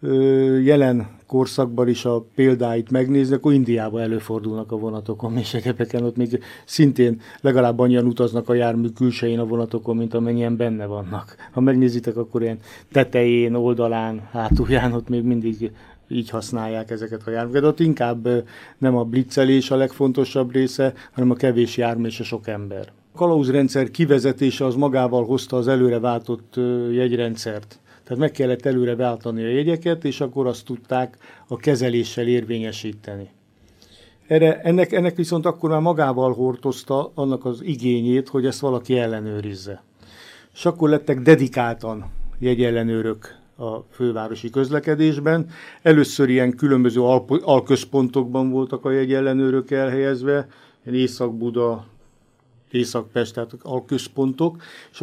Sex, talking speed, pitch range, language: male, 130 wpm, 115-135 Hz, Hungarian